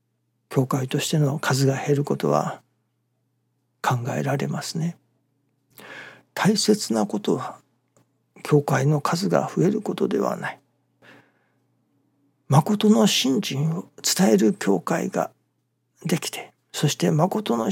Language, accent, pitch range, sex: Japanese, native, 125-155 Hz, male